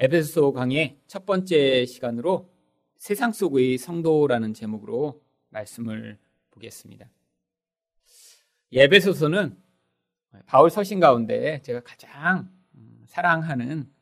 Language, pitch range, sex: Korean, 115-170 Hz, male